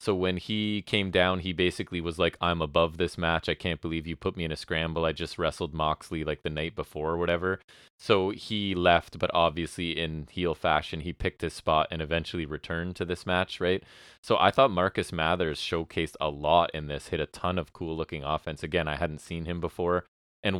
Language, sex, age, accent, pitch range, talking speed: English, male, 30-49, American, 80-90 Hz, 220 wpm